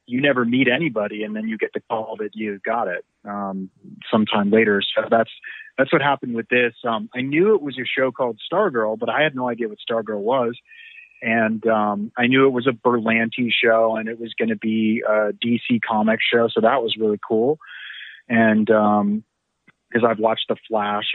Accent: American